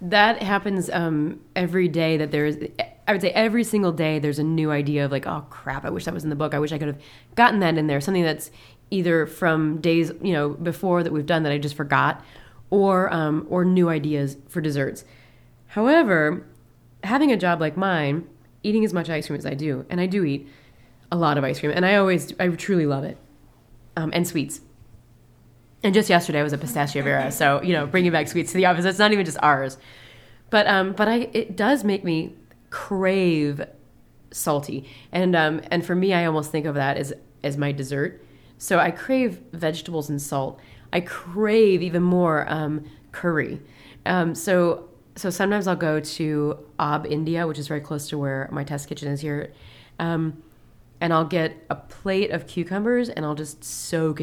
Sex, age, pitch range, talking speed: female, 20-39, 145-180 Hz, 200 wpm